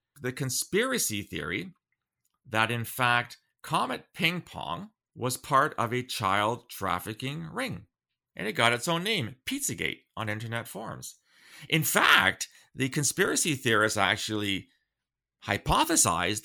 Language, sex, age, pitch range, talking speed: English, male, 40-59, 100-125 Hz, 120 wpm